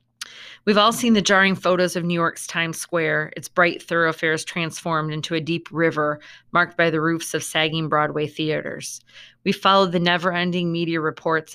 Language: English